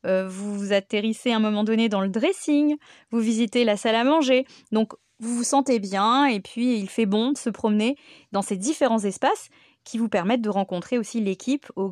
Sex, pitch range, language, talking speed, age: female, 200-260 Hz, French, 205 wpm, 20-39